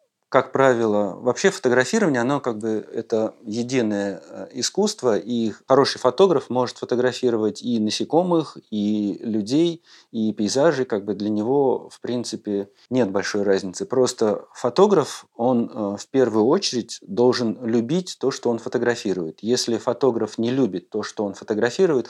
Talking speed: 135 wpm